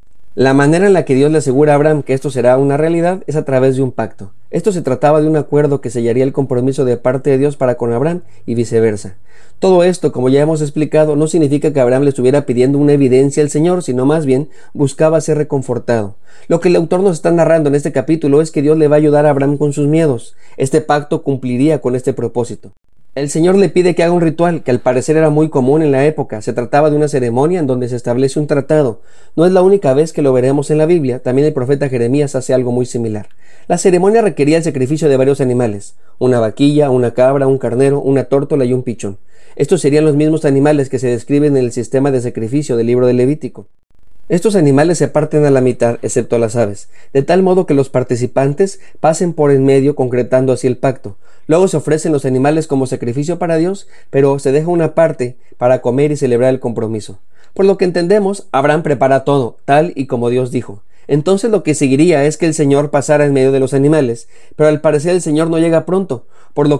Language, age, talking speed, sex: Spanish, 40-59, 230 wpm, male